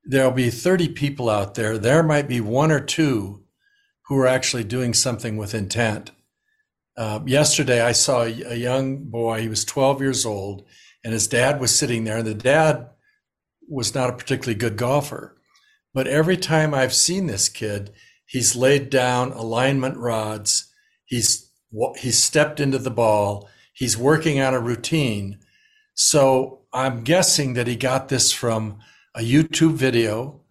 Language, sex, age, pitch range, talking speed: English, male, 60-79, 115-145 Hz, 155 wpm